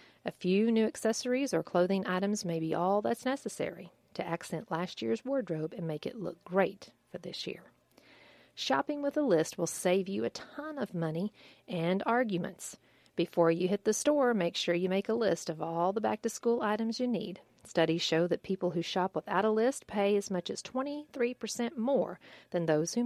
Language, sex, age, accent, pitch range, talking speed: English, female, 40-59, American, 175-225 Hz, 195 wpm